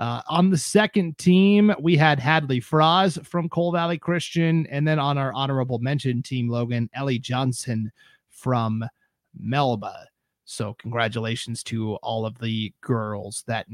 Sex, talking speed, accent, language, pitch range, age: male, 145 wpm, American, English, 120-160 Hz, 30-49